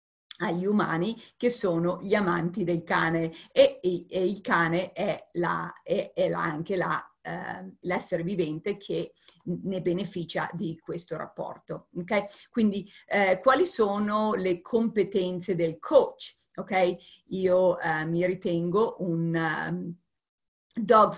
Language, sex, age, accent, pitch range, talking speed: Italian, female, 40-59, native, 175-210 Hz, 105 wpm